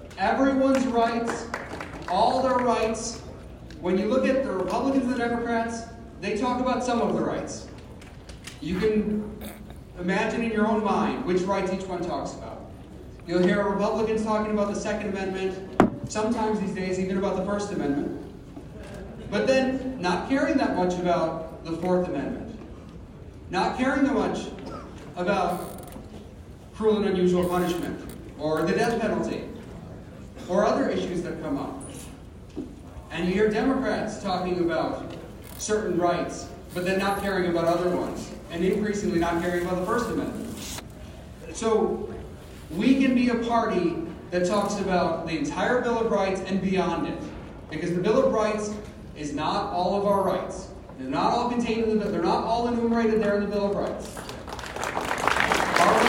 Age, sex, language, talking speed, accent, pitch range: 40-59, male, English, 155 wpm, American, 180-230 Hz